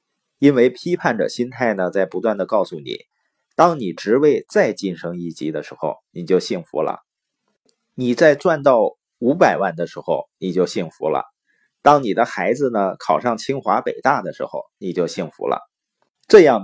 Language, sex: Chinese, male